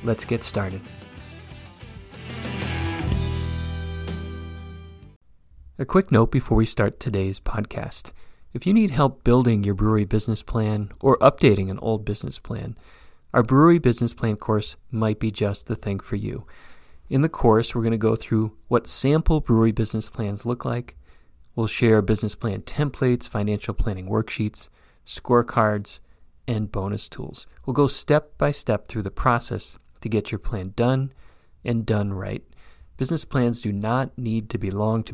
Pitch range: 100-120 Hz